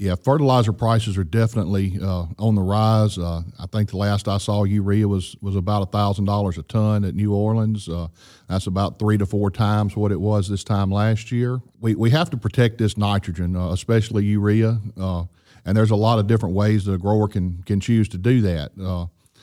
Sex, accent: male, American